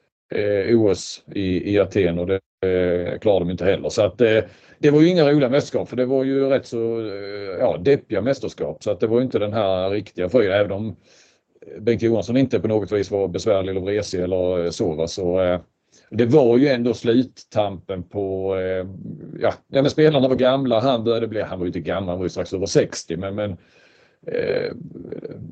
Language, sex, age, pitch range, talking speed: Swedish, male, 40-59, 95-125 Hz, 200 wpm